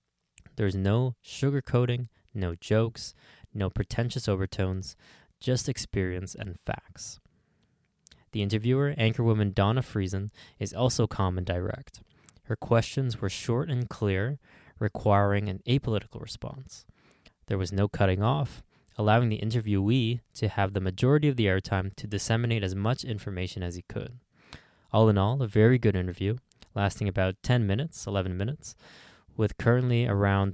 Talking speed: 140 wpm